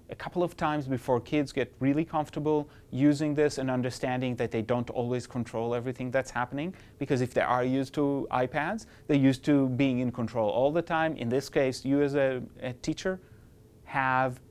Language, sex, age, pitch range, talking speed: English, male, 30-49, 125-180 Hz, 190 wpm